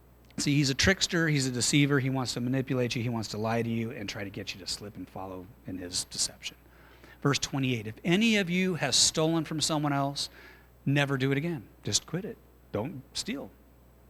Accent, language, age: American, English, 40-59